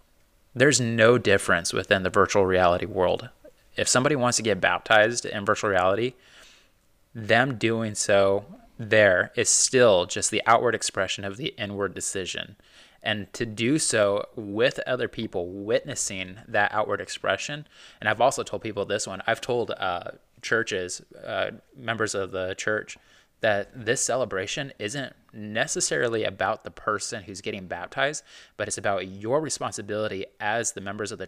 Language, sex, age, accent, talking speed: English, male, 20-39, American, 150 wpm